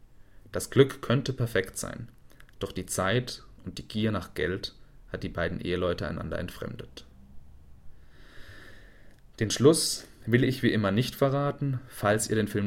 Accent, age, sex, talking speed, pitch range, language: German, 30-49, male, 145 wpm, 100-120 Hz, German